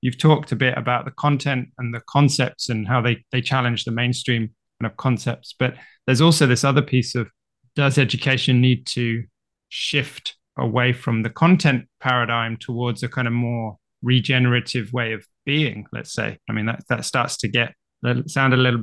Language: English